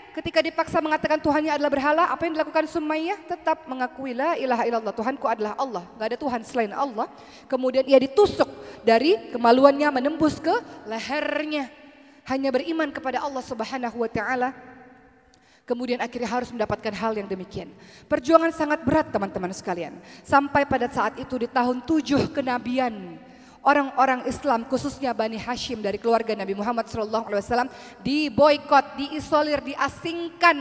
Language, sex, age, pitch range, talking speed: Indonesian, female, 20-39, 225-295 Hz, 140 wpm